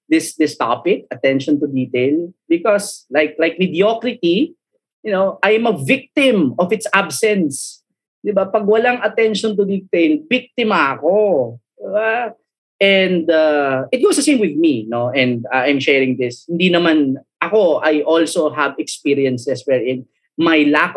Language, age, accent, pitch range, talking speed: Filipino, 20-39, native, 120-180 Hz, 145 wpm